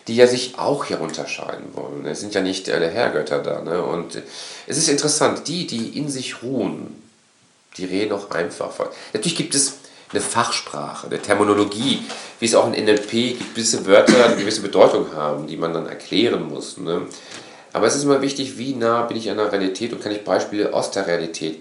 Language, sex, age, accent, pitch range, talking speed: German, male, 40-59, German, 95-120 Hz, 205 wpm